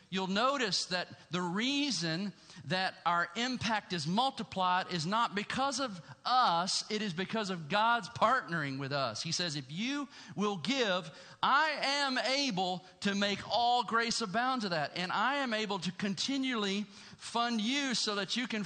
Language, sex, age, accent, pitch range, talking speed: English, male, 40-59, American, 145-200 Hz, 165 wpm